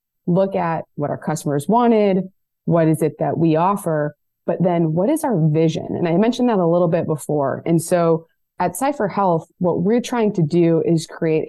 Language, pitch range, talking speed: English, 160-195 Hz, 200 wpm